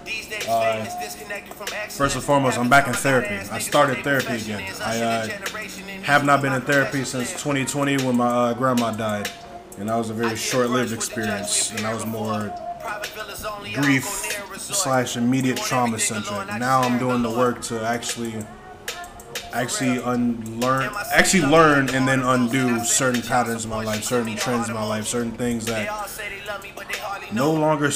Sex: male